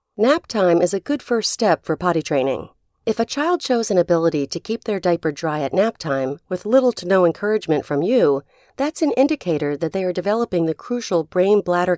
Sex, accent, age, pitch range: female, American, 40-59, 170-240 Hz